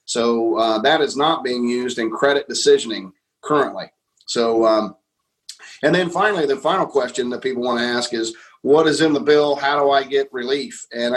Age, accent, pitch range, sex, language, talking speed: 30-49, American, 120-165 Hz, male, English, 195 wpm